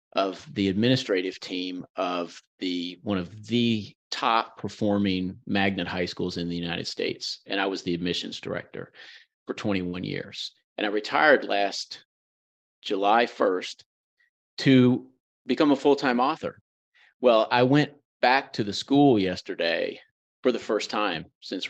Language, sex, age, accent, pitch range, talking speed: English, male, 40-59, American, 90-120 Hz, 140 wpm